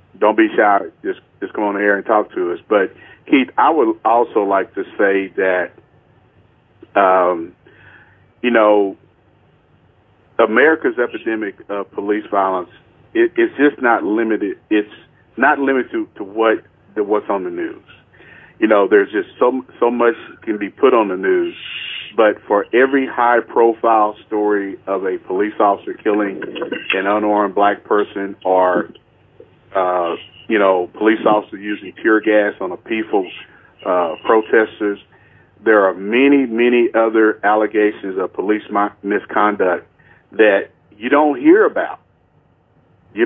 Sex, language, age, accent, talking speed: male, English, 40-59, American, 140 wpm